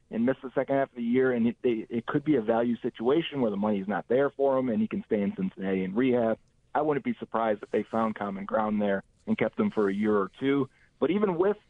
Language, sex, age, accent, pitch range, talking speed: English, male, 40-59, American, 110-135 Hz, 270 wpm